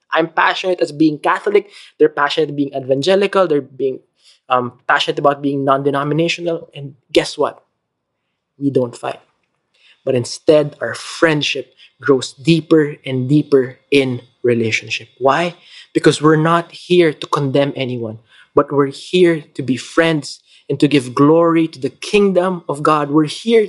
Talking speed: 145 wpm